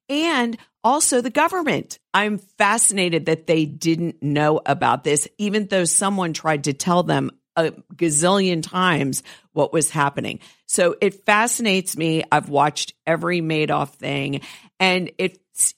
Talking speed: 140 wpm